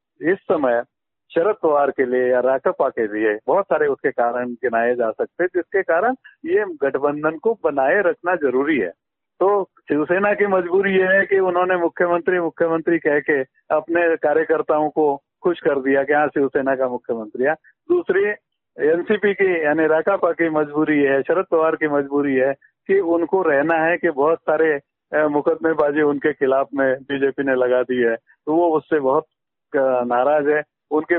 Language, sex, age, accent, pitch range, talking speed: Hindi, male, 50-69, native, 145-195 Hz, 170 wpm